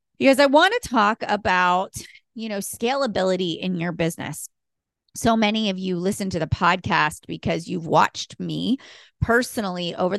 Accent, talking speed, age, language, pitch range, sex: American, 155 wpm, 30-49, English, 175-225 Hz, female